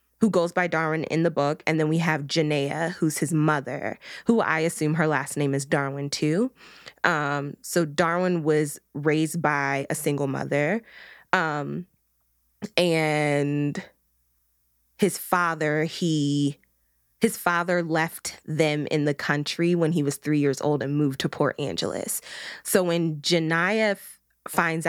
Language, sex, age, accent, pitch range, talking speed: English, female, 20-39, American, 145-175 Hz, 145 wpm